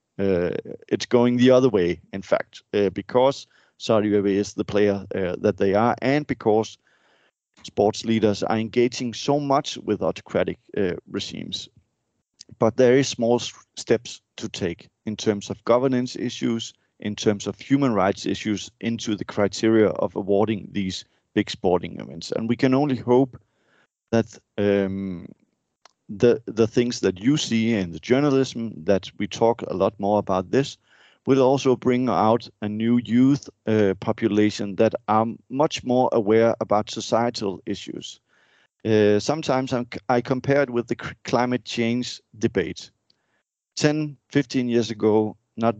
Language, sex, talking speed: English, male, 150 wpm